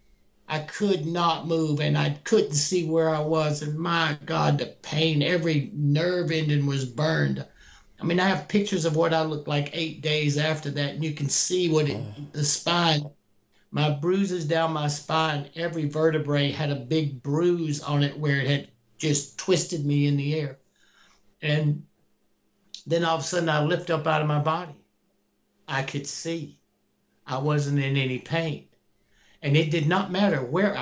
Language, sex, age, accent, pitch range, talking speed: English, male, 60-79, American, 140-165 Hz, 175 wpm